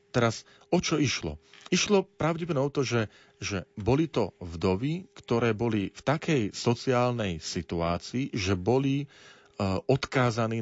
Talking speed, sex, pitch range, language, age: 130 wpm, male, 95-130 Hz, Slovak, 40-59